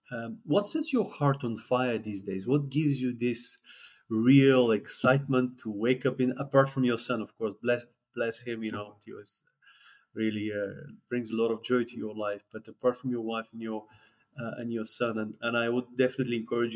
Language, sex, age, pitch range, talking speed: English, male, 30-49, 110-125 Hz, 210 wpm